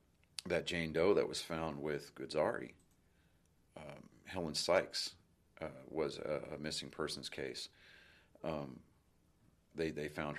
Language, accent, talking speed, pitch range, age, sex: English, American, 125 wpm, 70-80 Hz, 40-59, male